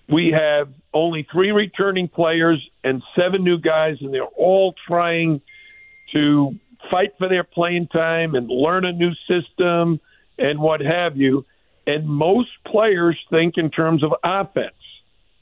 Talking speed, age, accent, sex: 145 wpm, 50-69, American, male